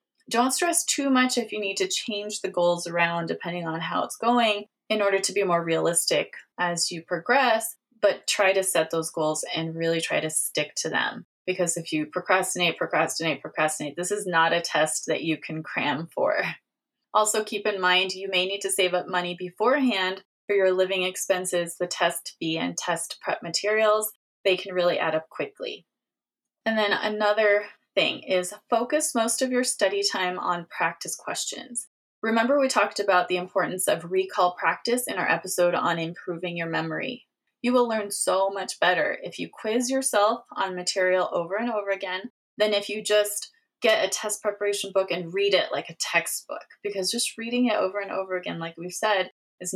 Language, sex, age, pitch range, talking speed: English, female, 20-39, 180-220 Hz, 190 wpm